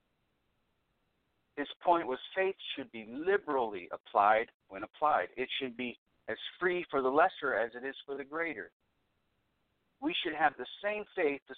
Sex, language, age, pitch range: male, English, 50-69, 130-185 Hz